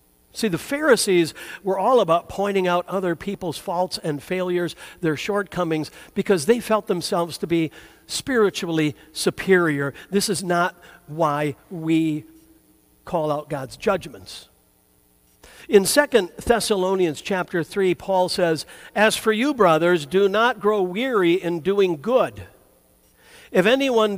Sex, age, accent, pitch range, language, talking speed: male, 60-79, American, 160-215 Hz, English, 130 wpm